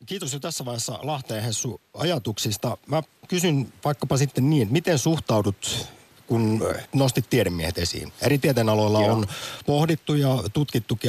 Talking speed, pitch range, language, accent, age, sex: 130 wpm, 95-125 Hz, Finnish, native, 50-69, male